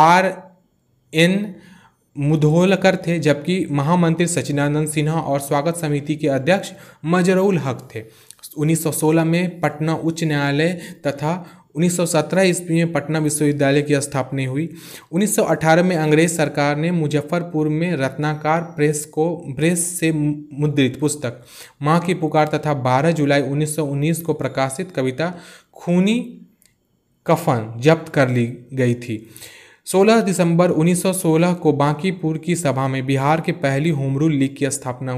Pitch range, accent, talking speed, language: 145-175 Hz, native, 130 wpm, Hindi